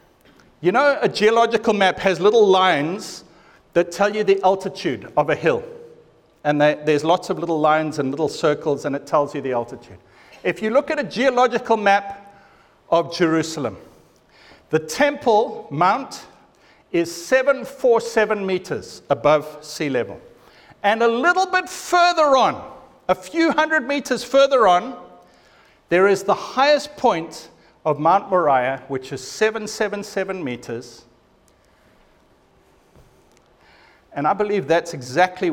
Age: 50-69